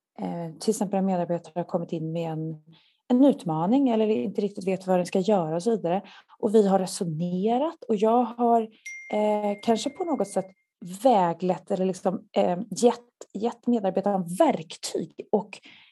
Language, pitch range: Swedish, 180-235 Hz